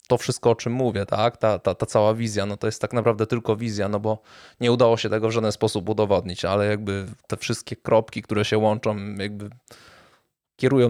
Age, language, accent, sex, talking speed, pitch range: 20-39, Polish, native, male, 210 wpm, 105-120 Hz